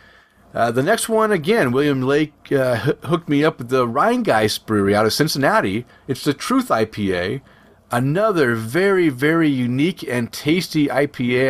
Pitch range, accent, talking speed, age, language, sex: 110-140 Hz, American, 155 wpm, 30-49, English, male